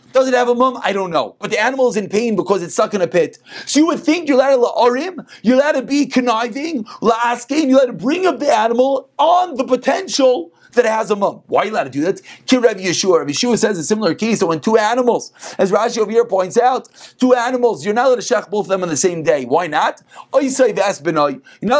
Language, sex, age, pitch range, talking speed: English, male, 30-49, 210-260 Hz, 260 wpm